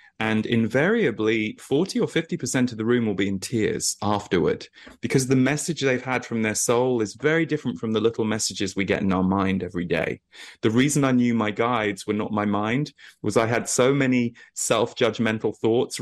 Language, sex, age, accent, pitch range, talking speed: English, male, 30-49, British, 105-125 Hz, 200 wpm